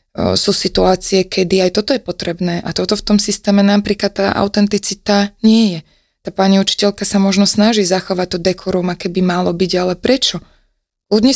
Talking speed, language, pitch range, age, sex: 175 wpm, Slovak, 185-200 Hz, 20-39, female